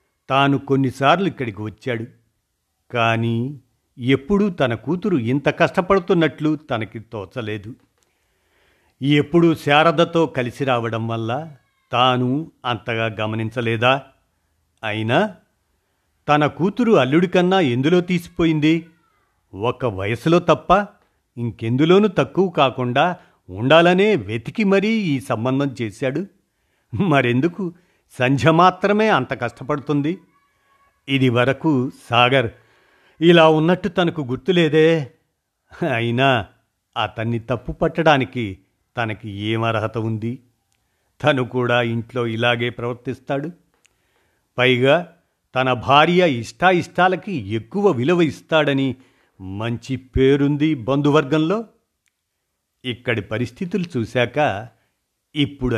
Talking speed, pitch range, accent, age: 80 wpm, 115-160 Hz, native, 50-69